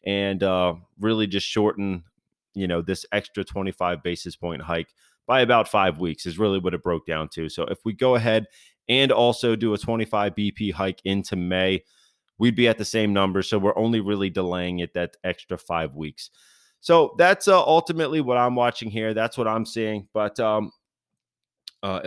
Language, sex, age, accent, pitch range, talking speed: English, male, 30-49, American, 95-115 Hz, 190 wpm